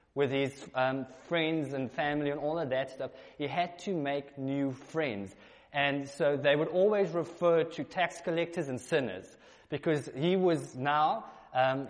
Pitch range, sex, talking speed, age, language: 130-165 Hz, male, 165 wpm, 20-39, English